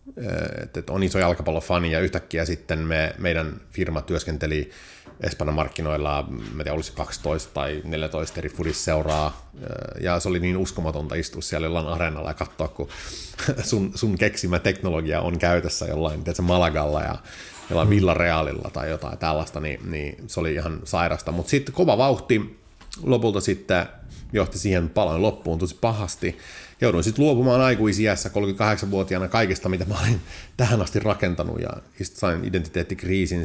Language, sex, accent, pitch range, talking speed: Finnish, male, native, 80-100 Hz, 145 wpm